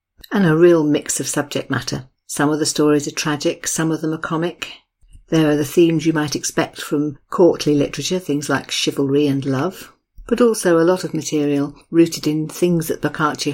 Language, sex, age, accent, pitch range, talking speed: English, female, 50-69, British, 145-165 Hz, 195 wpm